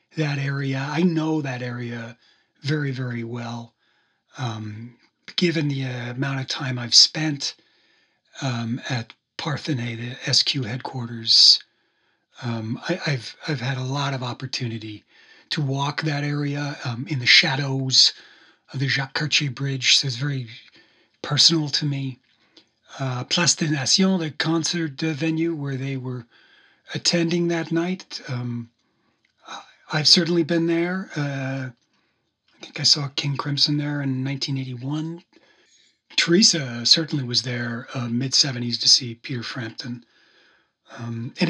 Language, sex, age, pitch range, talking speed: English, male, 40-59, 125-155 Hz, 135 wpm